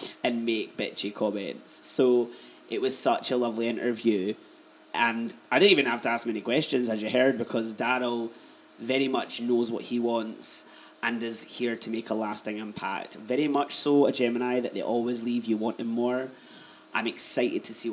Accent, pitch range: British, 115-130 Hz